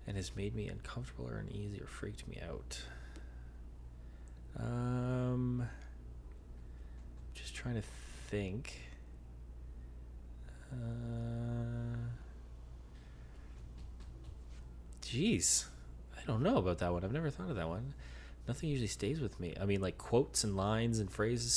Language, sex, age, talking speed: English, male, 20-39, 120 wpm